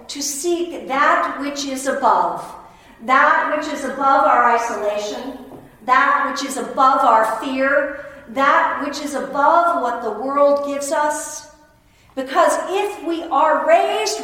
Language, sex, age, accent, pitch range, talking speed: English, female, 50-69, American, 230-295 Hz, 135 wpm